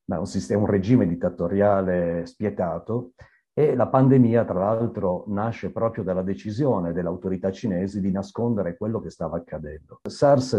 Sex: male